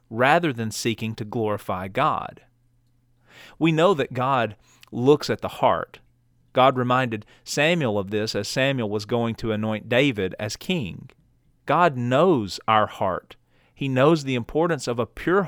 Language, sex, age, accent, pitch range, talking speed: English, male, 40-59, American, 115-140 Hz, 150 wpm